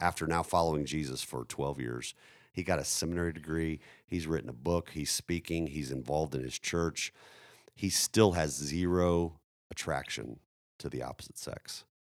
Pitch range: 70-90 Hz